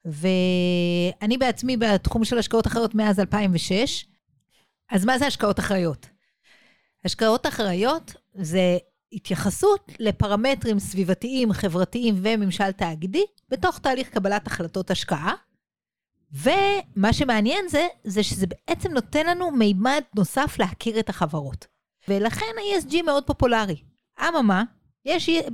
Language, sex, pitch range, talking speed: English, female, 195-255 Hz, 110 wpm